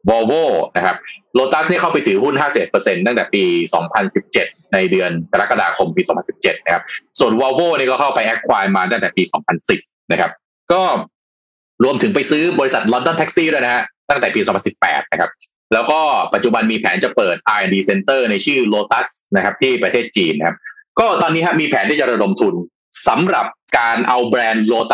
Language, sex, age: Thai, male, 20-39